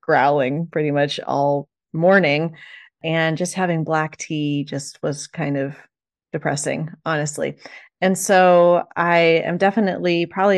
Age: 30-49